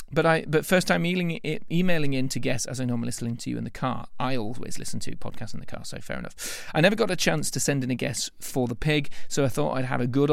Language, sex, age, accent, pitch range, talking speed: English, male, 30-49, British, 120-160 Hz, 285 wpm